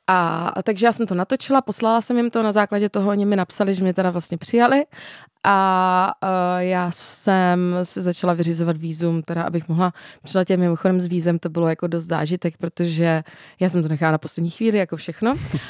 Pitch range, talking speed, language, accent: 175-200 Hz, 195 wpm, Czech, native